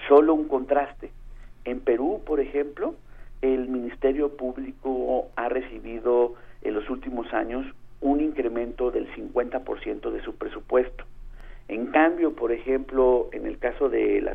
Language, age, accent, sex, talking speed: Spanish, 50-69, Mexican, male, 135 wpm